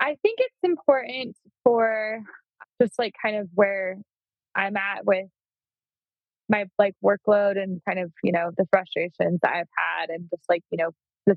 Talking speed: 170 wpm